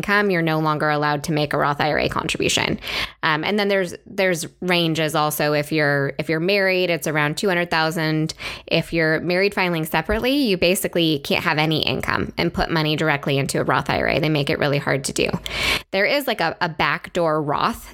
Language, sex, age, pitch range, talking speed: English, female, 20-39, 155-185 Hz, 195 wpm